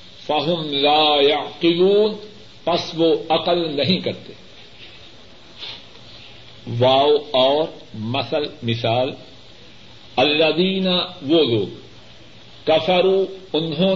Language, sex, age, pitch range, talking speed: Urdu, male, 60-79, 140-185 Hz, 75 wpm